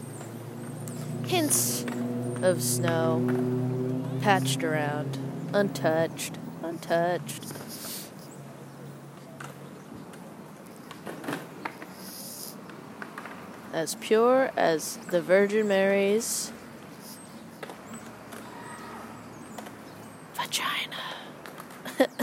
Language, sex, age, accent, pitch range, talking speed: English, female, 20-39, American, 165-235 Hz, 40 wpm